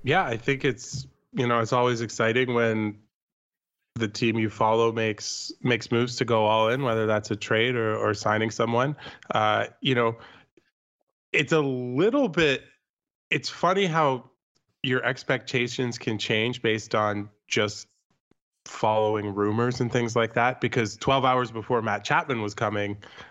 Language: English